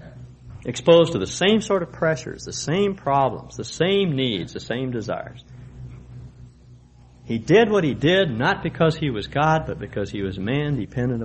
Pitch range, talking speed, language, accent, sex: 95-145 Hz, 170 wpm, English, American, male